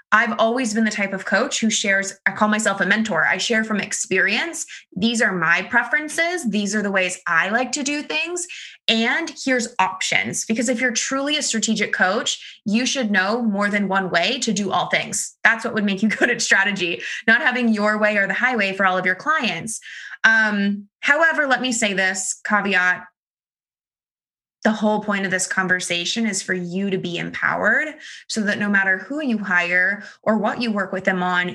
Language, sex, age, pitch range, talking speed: English, female, 20-39, 190-235 Hz, 200 wpm